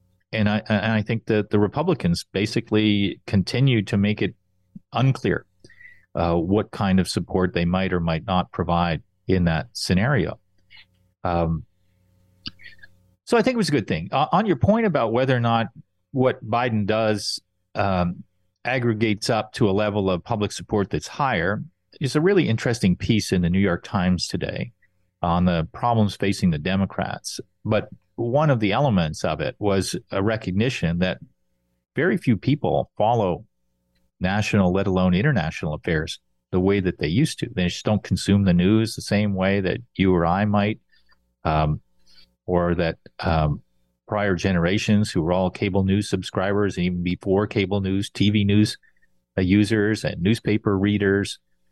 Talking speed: 160 wpm